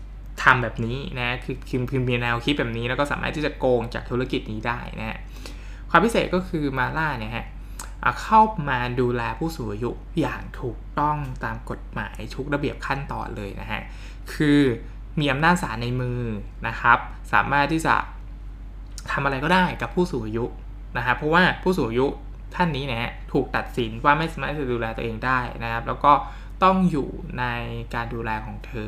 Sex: male